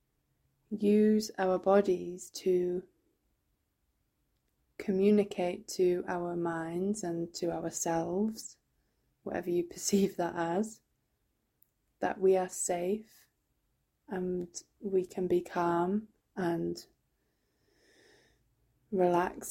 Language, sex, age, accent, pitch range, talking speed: English, female, 20-39, British, 175-195 Hz, 85 wpm